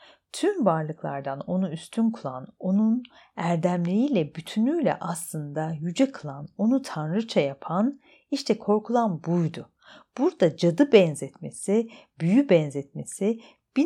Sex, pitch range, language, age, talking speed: female, 155-215 Hz, Turkish, 50-69, 100 wpm